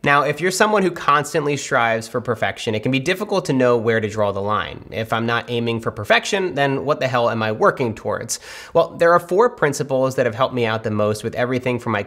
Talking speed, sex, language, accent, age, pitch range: 250 wpm, male, English, American, 30-49, 110-180 Hz